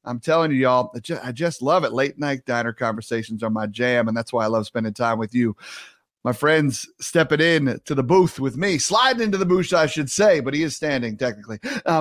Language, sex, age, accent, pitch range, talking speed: English, male, 30-49, American, 125-175 Hz, 230 wpm